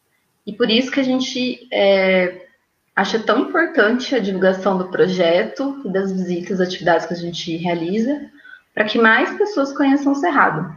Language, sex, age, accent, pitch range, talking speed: Portuguese, female, 20-39, Brazilian, 185-235 Hz, 155 wpm